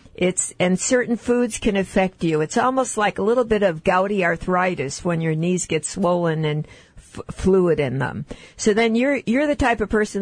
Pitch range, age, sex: 175-215 Hz, 50-69, female